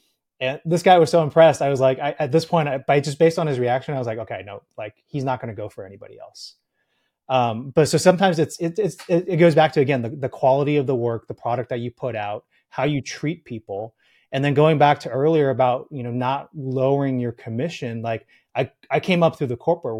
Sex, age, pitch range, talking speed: male, 30-49, 120-150 Hz, 250 wpm